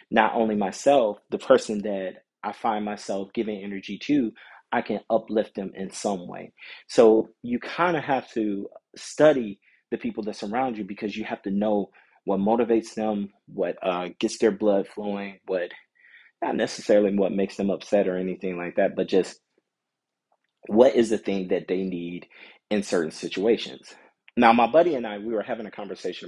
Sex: male